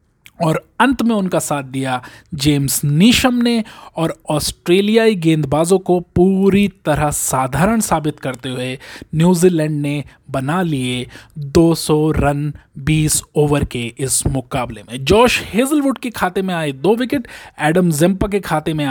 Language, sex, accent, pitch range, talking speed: Hindi, male, native, 140-205 Hz, 140 wpm